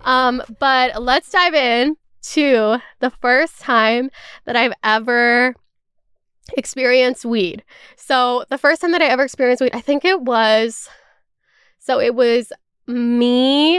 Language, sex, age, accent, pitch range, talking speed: English, female, 10-29, American, 230-300 Hz, 135 wpm